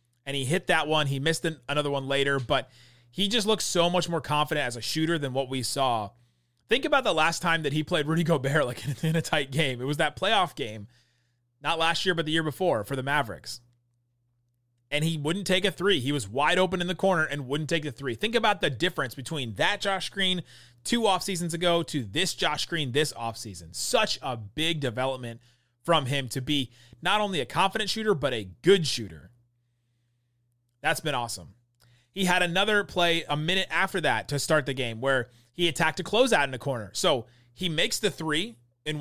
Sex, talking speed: male, 210 wpm